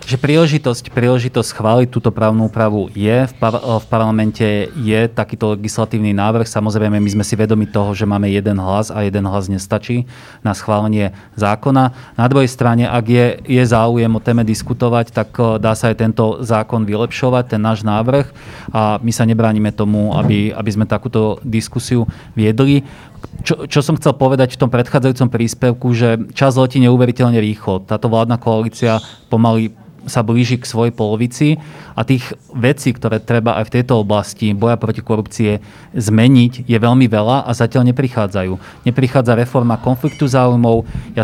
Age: 30-49